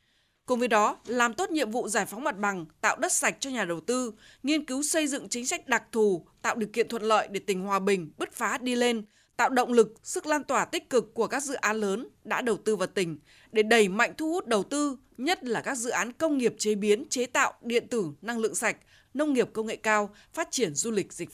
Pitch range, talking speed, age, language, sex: 210-285 Hz, 255 wpm, 20-39, Vietnamese, female